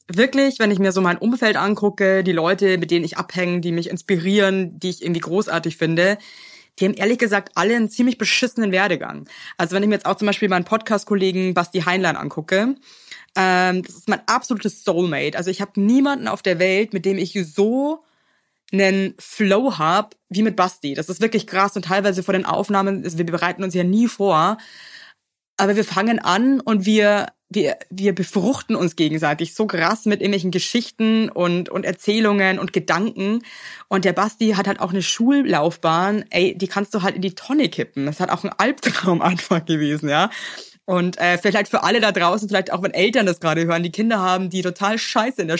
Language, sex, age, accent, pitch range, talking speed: German, female, 20-39, German, 180-210 Hz, 195 wpm